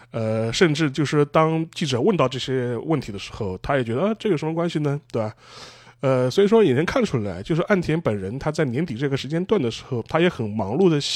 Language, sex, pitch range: Chinese, male, 125-180 Hz